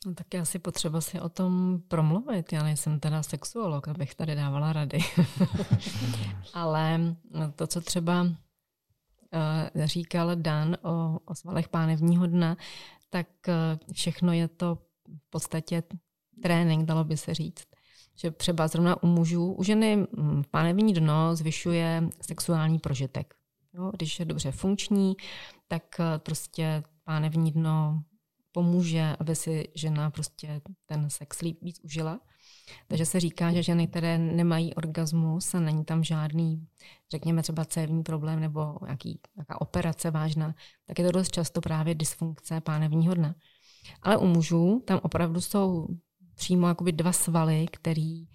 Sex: female